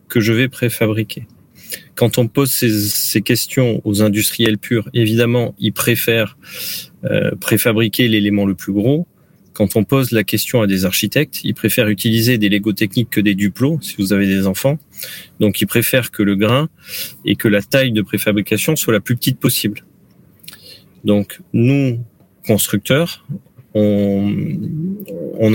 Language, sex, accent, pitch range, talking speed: French, male, French, 105-130 Hz, 155 wpm